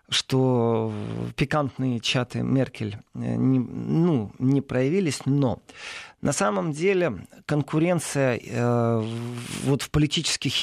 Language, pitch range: Russian, 115-145 Hz